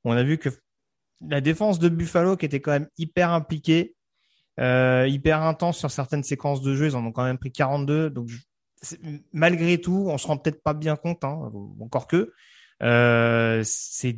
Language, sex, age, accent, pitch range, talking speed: French, male, 30-49, French, 125-160 Hz, 190 wpm